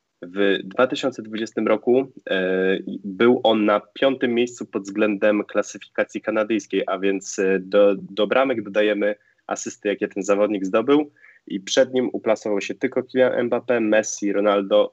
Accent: native